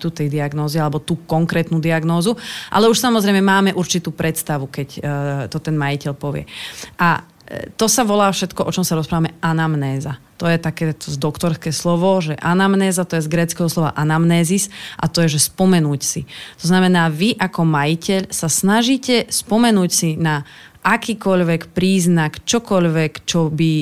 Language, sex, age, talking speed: Slovak, female, 30-49, 155 wpm